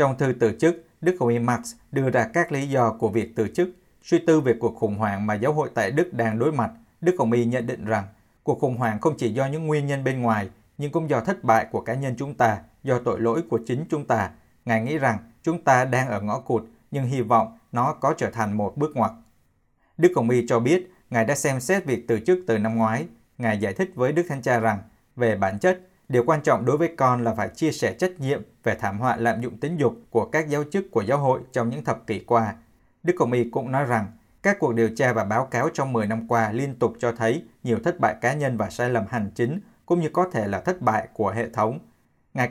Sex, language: male, Vietnamese